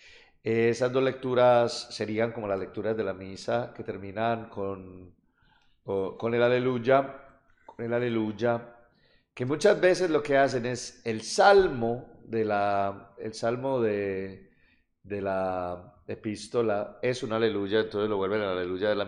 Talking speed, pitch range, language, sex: 150 wpm, 105-120 Hz, Spanish, male